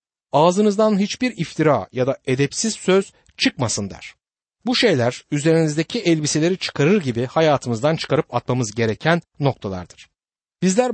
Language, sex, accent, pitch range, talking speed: Turkish, male, native, 125-190 Hz, 115 wpm